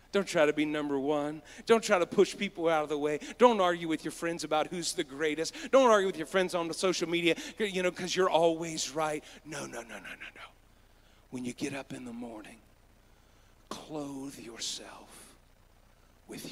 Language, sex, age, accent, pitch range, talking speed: English, male, 40-59, American, 115-165 Hz, 200 wpm